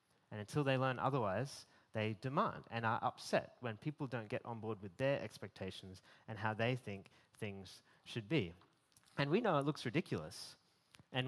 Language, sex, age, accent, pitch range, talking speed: English, male, 30-49, Australian, 115-150 Hz, 175 wpm